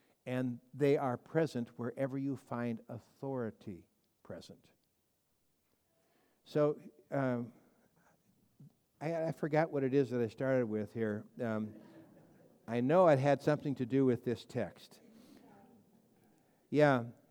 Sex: male